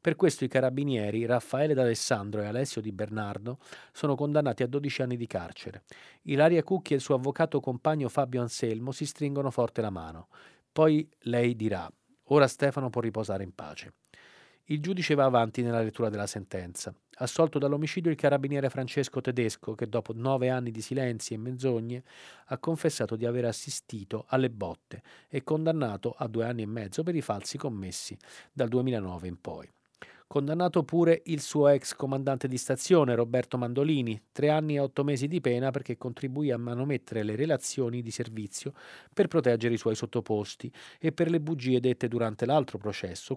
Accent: native